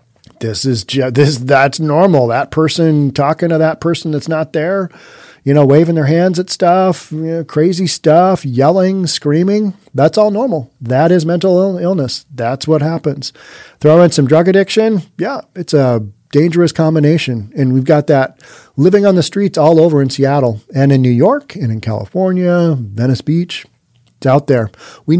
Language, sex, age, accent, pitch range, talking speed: English, male, 40-59, American, 135-175 Hz, 170 wpm